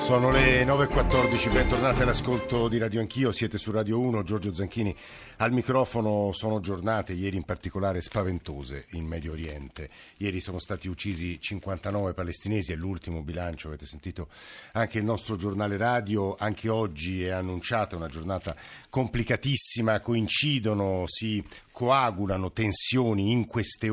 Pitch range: 90-115 Hz